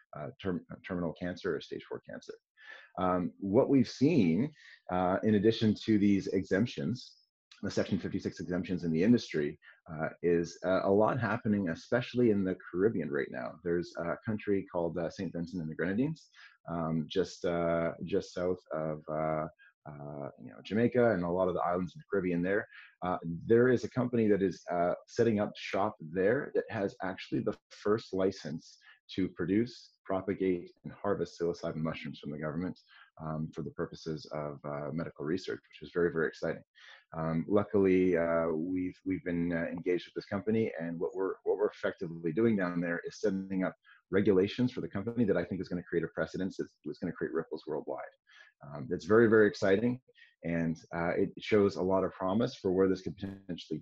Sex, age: male, 30-49